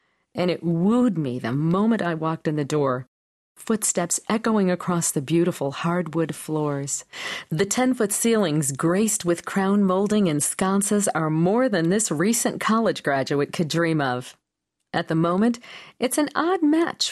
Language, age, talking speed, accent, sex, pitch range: English, 40-59, 155 wpm, American, female, 150-220 Hz